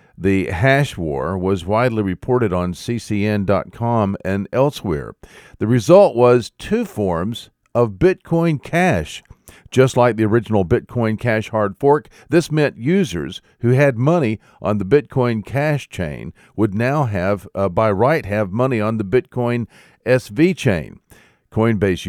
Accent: American